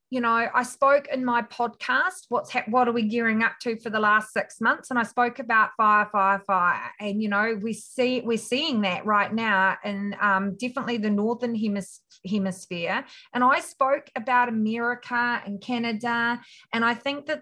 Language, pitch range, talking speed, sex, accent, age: English, 215-260 Hz, 190 wpm, female, Australian, 30-49